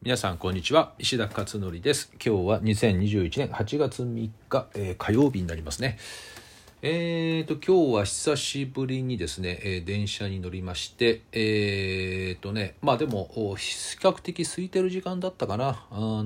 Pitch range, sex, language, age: 95-150 Hz, male, Japanese, 40-59